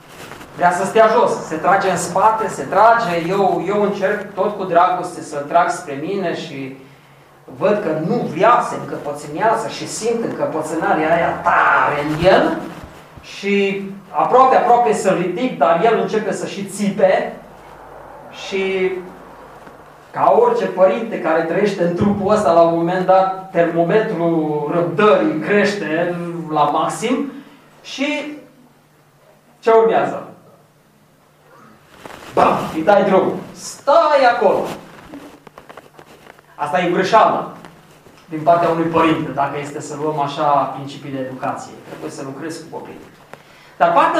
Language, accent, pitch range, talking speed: Romanian, native, 165-220 Hz, 125 wpm